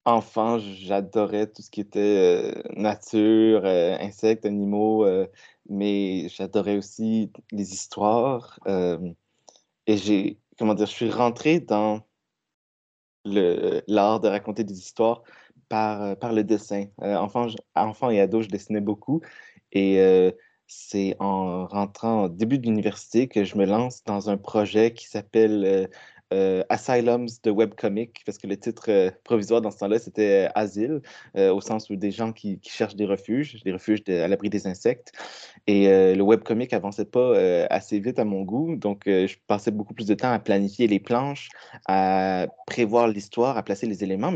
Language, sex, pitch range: French, male, 100-115 Hz